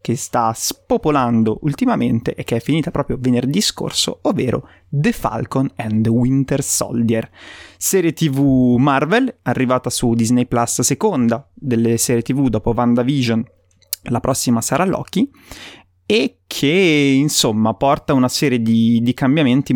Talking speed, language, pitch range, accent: 135 wpm, Italian, 115-140 Hz, native